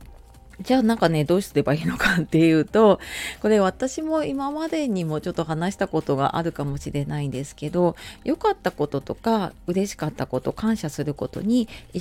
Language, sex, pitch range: Japanese, female, 145-205 Hz